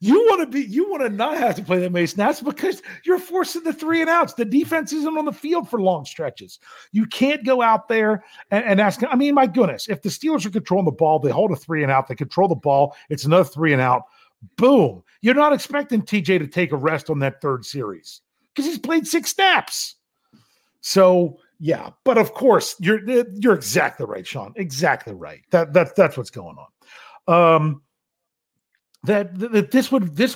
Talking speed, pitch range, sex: 210 wpm, 145-220 Hz, male